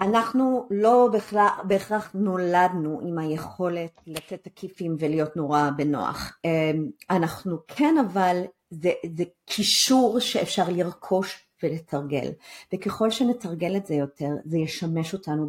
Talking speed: 110 wpm